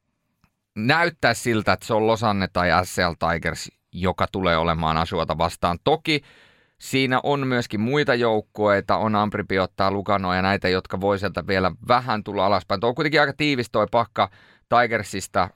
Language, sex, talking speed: Finnish, male, 150 wpm